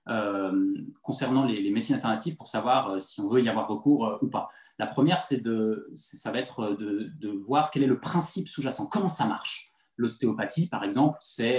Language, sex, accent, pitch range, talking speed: French, male, French, 125-185 Hz, 210 wpm